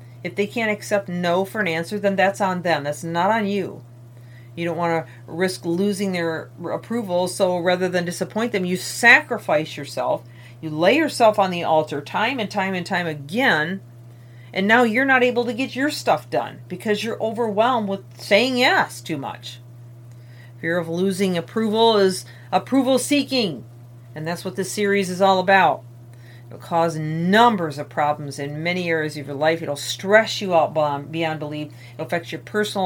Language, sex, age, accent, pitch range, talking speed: English, female, 40-59, American, 125-195 Hz, 175 wpm